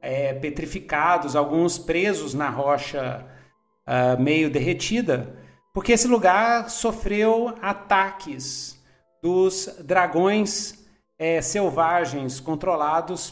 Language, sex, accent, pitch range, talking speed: Portuguese, male, Brazilian, 145-185 Hz, 70 wpm